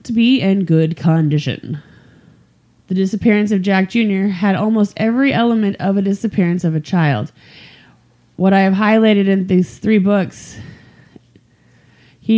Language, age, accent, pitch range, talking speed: English, 20-39, American, 160-205 Hz, 135 wpm